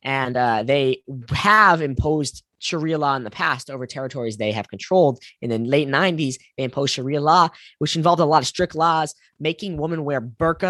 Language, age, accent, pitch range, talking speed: English, 10-29, American, 130-160 Hz, 190 wpm